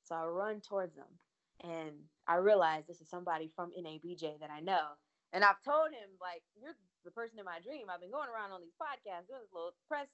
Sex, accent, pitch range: female, American, 175-255 Hz